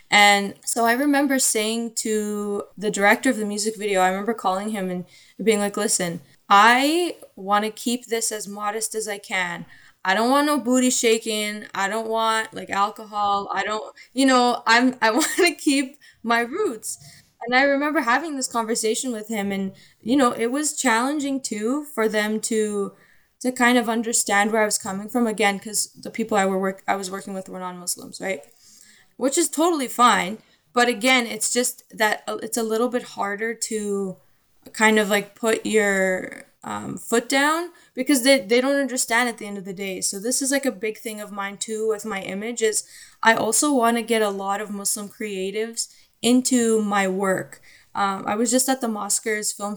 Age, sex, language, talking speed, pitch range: 10-29, female, English, 195 wpm, 205-245 Hz